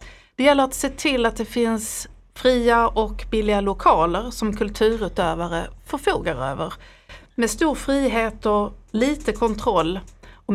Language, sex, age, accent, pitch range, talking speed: English, female, 30-49, Swedish, 200-245 Hz, 130 wpm